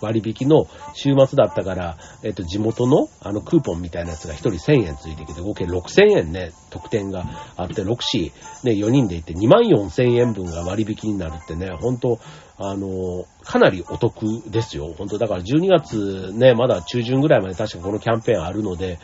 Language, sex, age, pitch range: Japanese, male, 40-59, 95-140 Hz